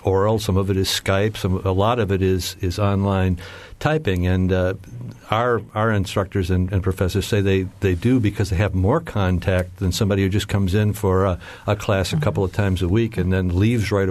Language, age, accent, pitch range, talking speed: English, 60-79, American, 95-110 Hz, 220 wpm